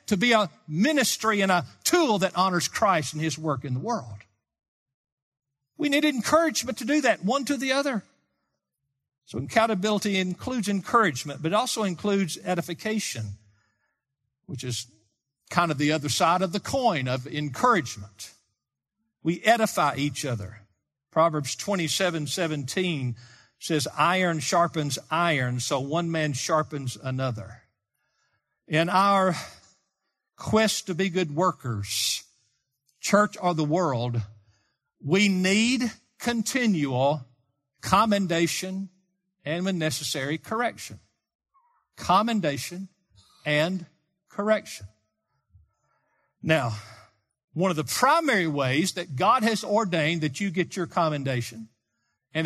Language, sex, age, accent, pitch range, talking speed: English, male, 50-69, American, 135-200 Hz, 115 wpm